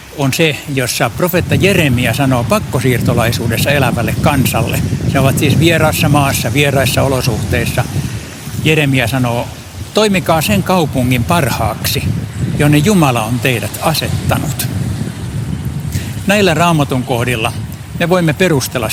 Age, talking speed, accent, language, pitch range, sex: 60-79, 105 wpm, native, Finnish, 120-150 Hz, male